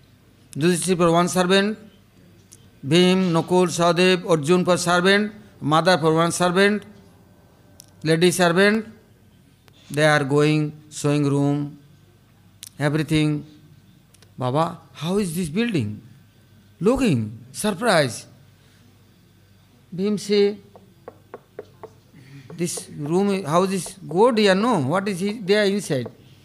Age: 60-79